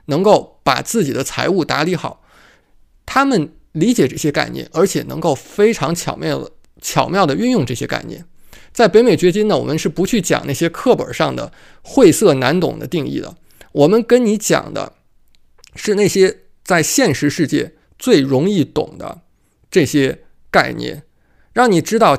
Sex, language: male, Chinese